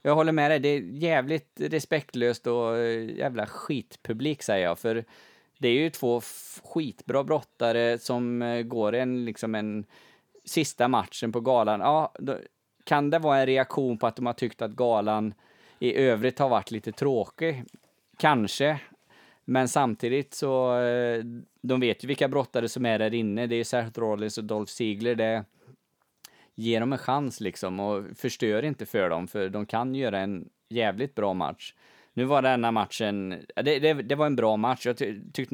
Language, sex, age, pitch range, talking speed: Swedish, male, 20-39, 110-140 Hz, 170 wpm